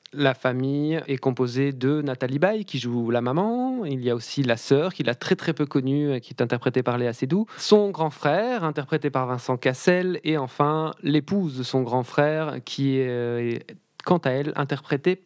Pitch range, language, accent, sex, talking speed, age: 135-175 Hz, French, French, male, 195 wpm, 20-39